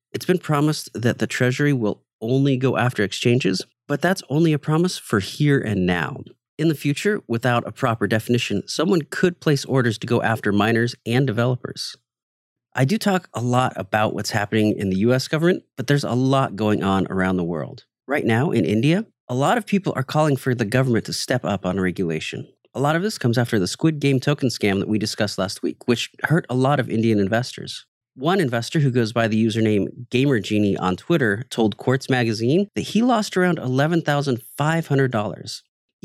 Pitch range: 110-155 Hz